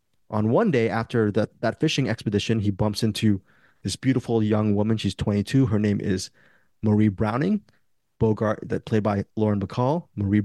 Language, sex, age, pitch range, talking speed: English, male, 30-49, 105-130 Hz, 165 wpm